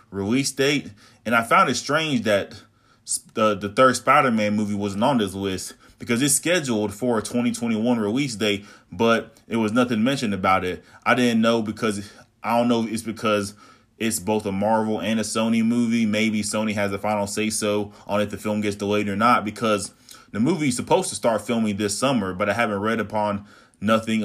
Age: 20-39